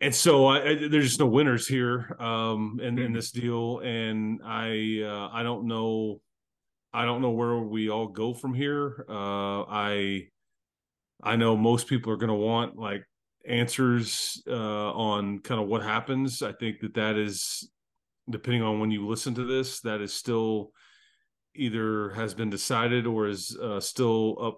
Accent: American